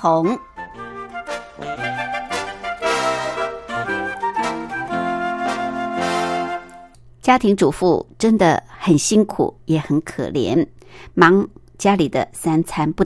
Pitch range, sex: 140-200 Hz, male